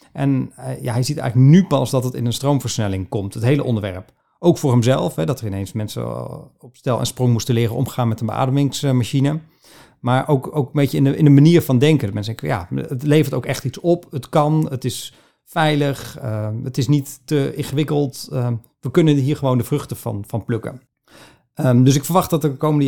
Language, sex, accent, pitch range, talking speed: Dutch, male, Dutch, 115-145 Hz, 205 wpm